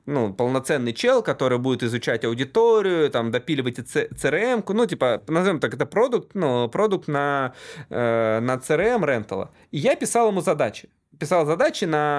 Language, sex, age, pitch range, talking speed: Russian, male, 20-39, 120-150 Hz, 155 wpm